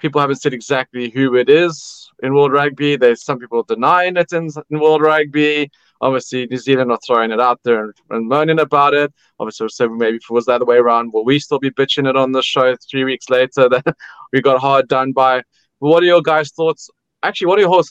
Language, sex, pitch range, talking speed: English, male, 125-150 Hz, 230 wpm